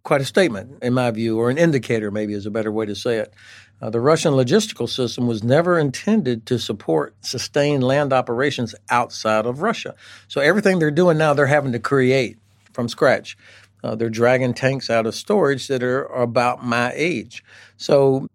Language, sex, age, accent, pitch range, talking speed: English, male, 60-79, American, 110-140 Hz, 185 wpm